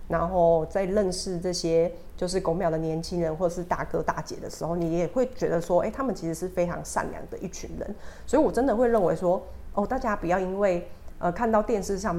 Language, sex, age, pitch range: Chinese, female, 30-49, 165-190 Hz